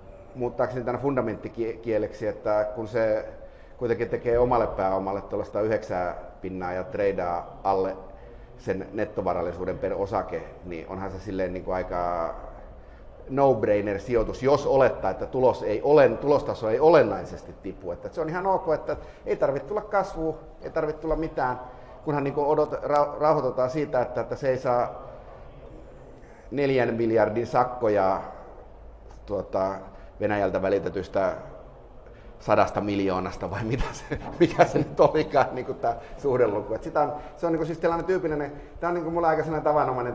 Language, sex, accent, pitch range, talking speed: Finnish, male, native, 105-145 Hz, 135 wpm